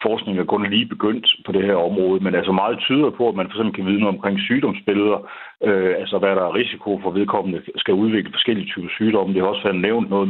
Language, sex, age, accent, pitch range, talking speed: Danish, male, 60-79, native, 95-110 Hz, 240 wpm